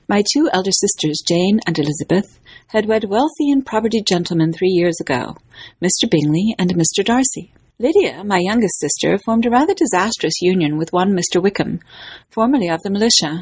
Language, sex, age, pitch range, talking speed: English, female, 40-59, 170-240 Hz, 170 wpm